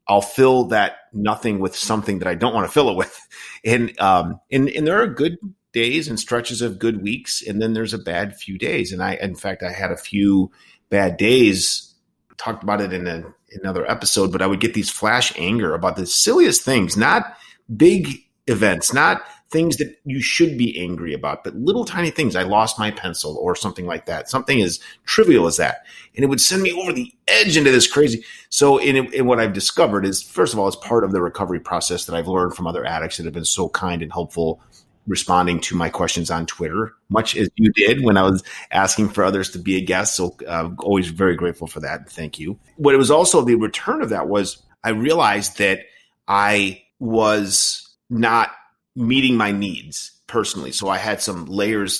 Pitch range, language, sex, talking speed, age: 90-115 Hz, English, male, 210 wpm, 30-49